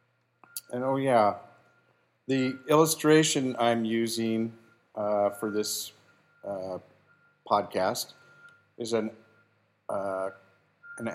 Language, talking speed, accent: English, 85 wpm, American